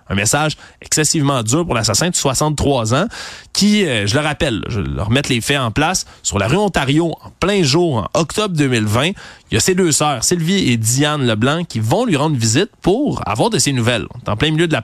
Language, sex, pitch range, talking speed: French, male, 130-175 Hz, 225 wpm